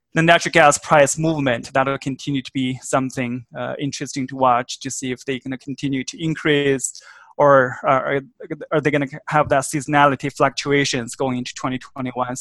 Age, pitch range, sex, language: 20-39, 130-145 Hz, male, English